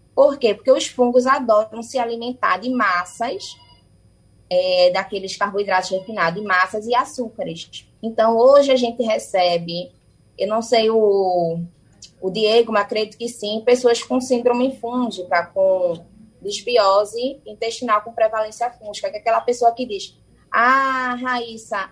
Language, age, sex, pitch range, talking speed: Portuguese, 20-39, female, 205-255 Hz, 135 wpm